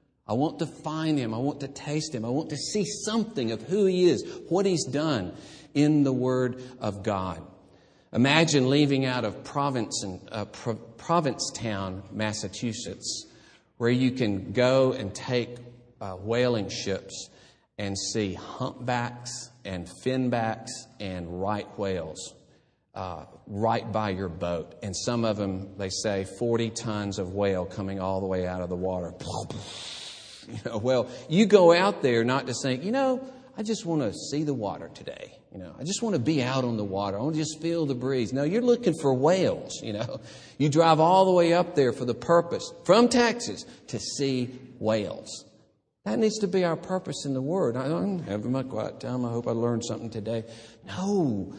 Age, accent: 40-59, American